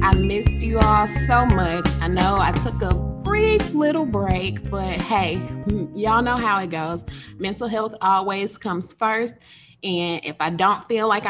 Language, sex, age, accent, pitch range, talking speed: English, female, 20-39, American, 165-215 Hz, 170 wpm